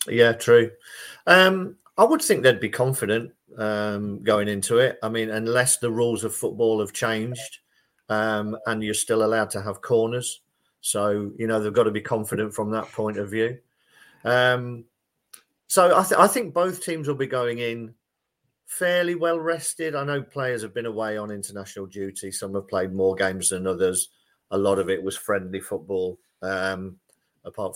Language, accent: English, British